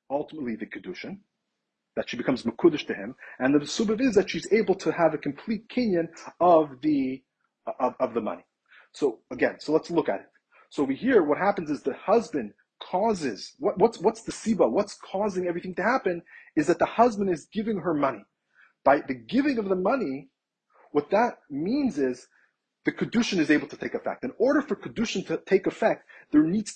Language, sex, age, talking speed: English, male, 30-49, 195 wpm